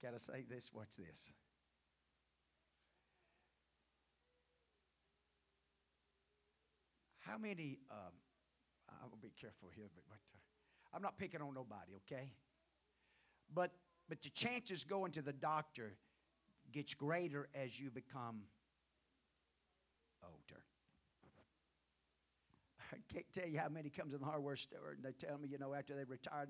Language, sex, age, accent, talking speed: English, male, 50-69, American, 120 wpm